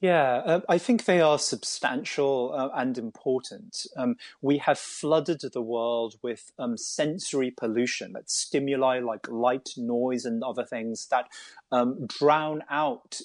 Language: English